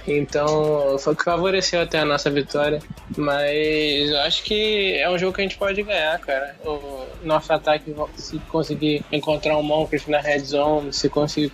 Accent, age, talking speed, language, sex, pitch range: Brazilian, 10-29, 185 wpm, Portuguese, male, 140-155 Hz